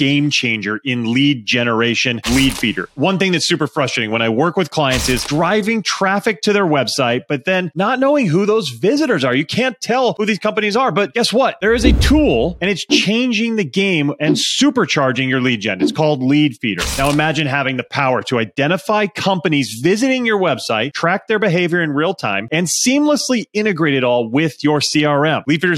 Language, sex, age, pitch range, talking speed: English, male, 30-49, 135-185 Hz, 200 wpm